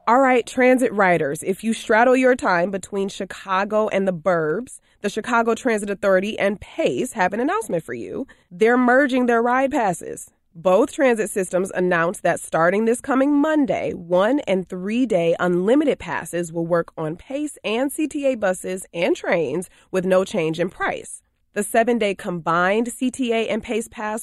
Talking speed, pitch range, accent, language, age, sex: 165 wpm, 180-245 Hz, American, English, 20-39, female